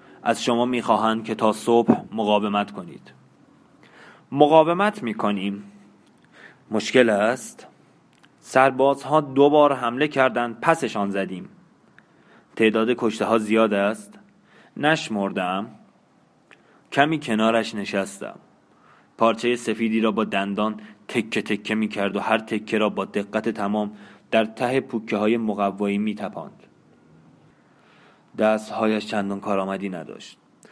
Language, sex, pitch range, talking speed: Persian, male, 105-125 Hz, 115 wpm